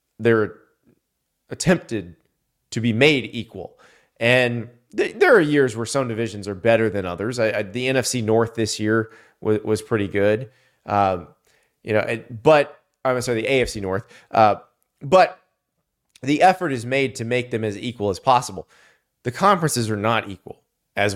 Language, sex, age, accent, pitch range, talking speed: English, male, 30-49, American, 110-135 Hz, 160 wpm